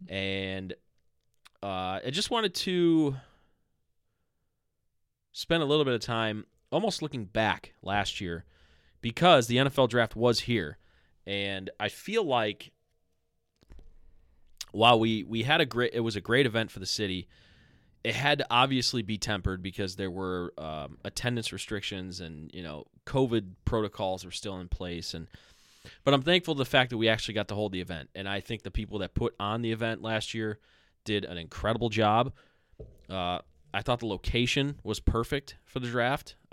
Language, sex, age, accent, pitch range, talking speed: English, male, 20-39, American, 95-120 Hz, 170 wpm